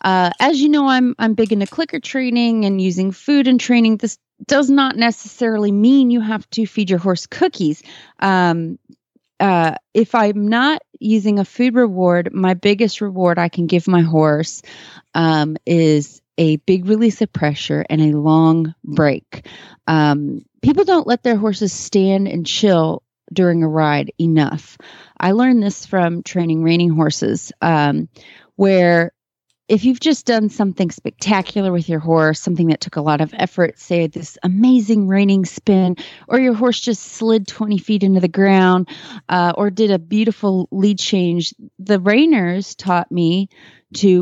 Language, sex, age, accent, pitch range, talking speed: English, female, 30-49, American, 170-230 Hz, 165 wpm